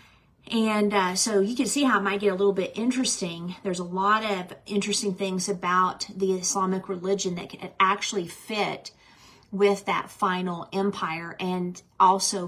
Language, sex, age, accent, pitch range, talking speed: English, female, 40-59, American, 180-210 Hz, 165 wpm